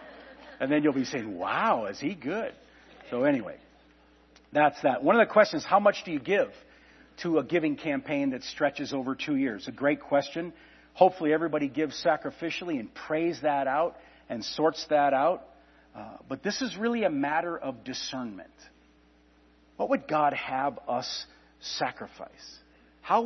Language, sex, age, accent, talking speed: English, male, 50-69, American, 160 wpm